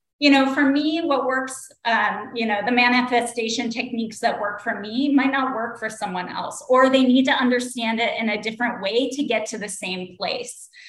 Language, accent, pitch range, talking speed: English, American, 215-255 Hz, 210 wpm